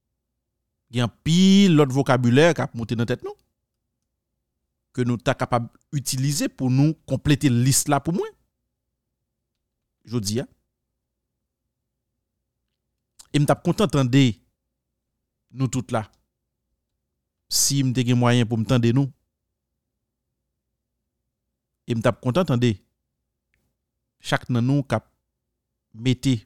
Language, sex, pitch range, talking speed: French, male, 115-145 Hz, 120 wpm